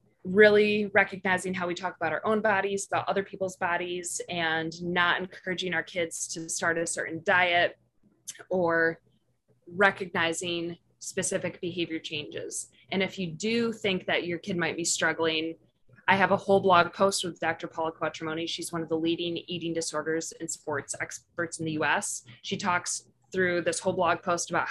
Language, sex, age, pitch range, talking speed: English, female, 20-39, 160-185 Hz, 170 wpm